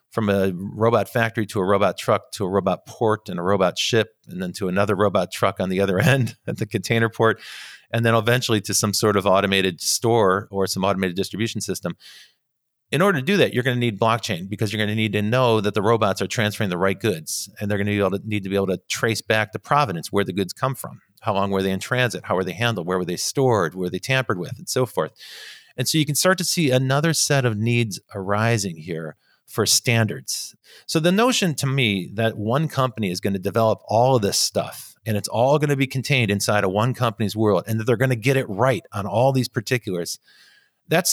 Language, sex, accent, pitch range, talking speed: English, male, American, 100-130 Hz, 240 wpm